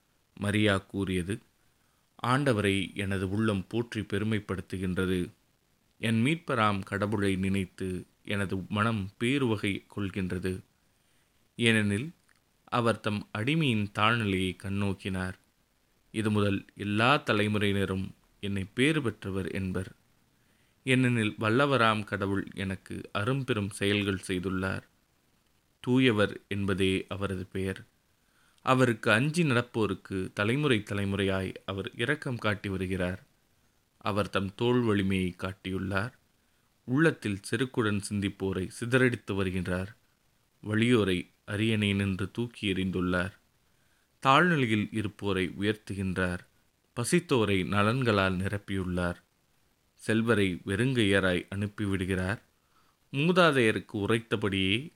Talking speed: 80 wpm